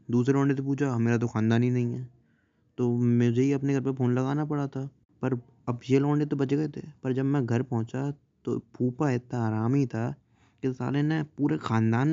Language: Hindi